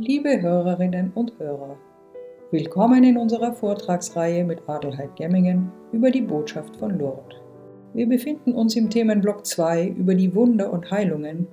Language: German